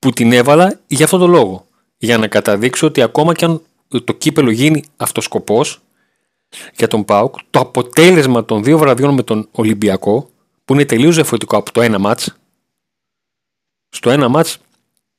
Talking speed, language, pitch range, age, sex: 160 wpm, Greek, 115-160 Hz, 40-59, male